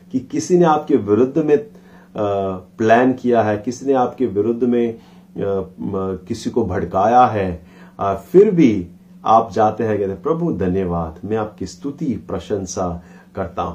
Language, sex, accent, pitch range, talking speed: Hindi, male, native, 95-135 Hz, 145 wpm